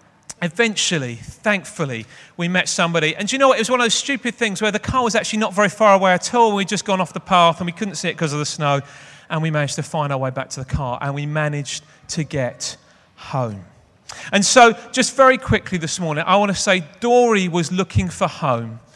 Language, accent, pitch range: English, British, 150-205 Hz